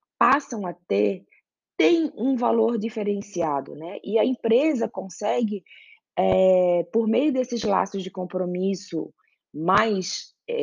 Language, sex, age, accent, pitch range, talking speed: Portuguese, female, 20-39, Brazilian, 175-250 Hz, 105 wpm